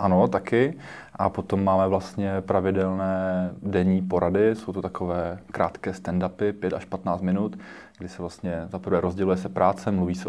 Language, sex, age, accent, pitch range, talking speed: Czech, male, 20-39, native, 90-95 Hz, 155 wpm